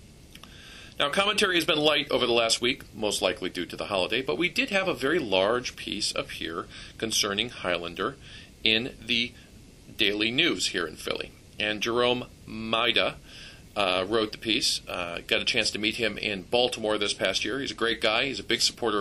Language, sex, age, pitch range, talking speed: English, male, 40-59, 105-125 Hz, 195 wpm